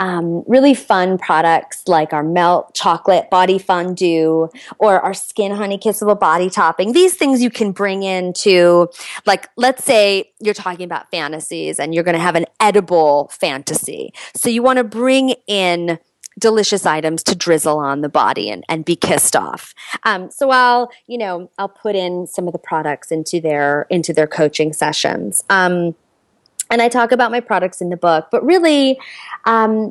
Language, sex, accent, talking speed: English, female, American, 175 wpm